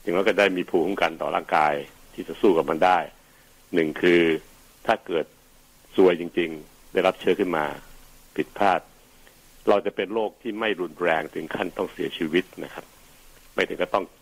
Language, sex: Thai, male